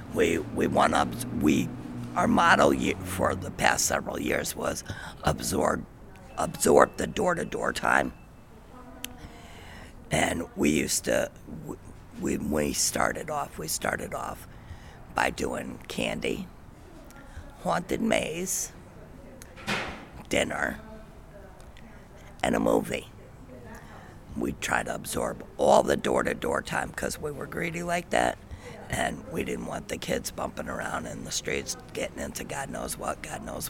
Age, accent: 50-69, American